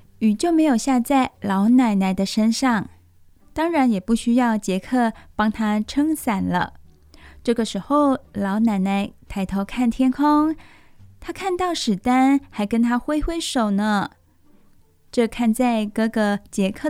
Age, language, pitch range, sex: 20-39, Chinese, 200-255 Hz, female